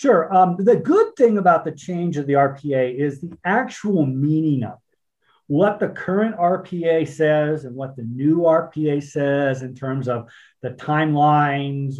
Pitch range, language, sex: 140-190 Hz, English, male